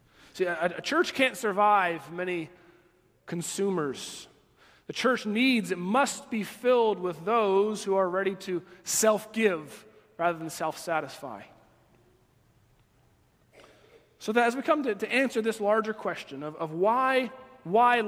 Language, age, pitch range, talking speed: English, 30-49, 150-230 Hz, 130 wpm